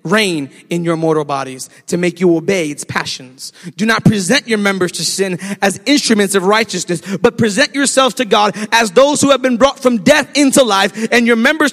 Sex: male